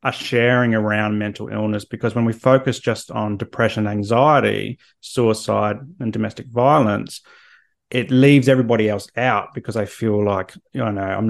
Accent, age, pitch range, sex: Australian, 30-49, 105-125 Hz, male